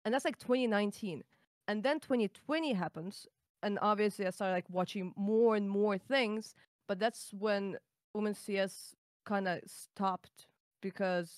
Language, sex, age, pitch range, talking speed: English, female, 20-39, 180-220 Hz, 160 wpm